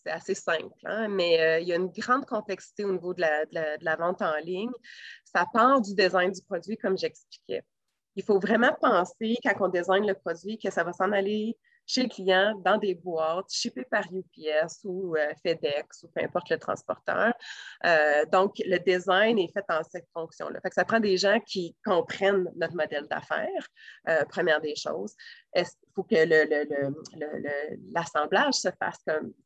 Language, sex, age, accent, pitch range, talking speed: French, female, 30-49, Canadian, 170-215 Hz, 200 wpm